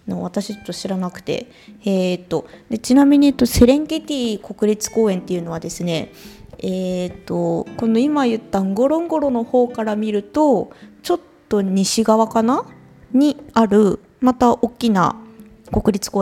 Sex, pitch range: female, 185-260 Hz